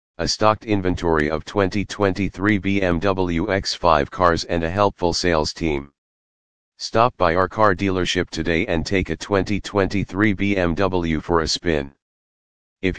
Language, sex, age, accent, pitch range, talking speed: English, male, 40-59, American, 80-100 Hz, 130 wpm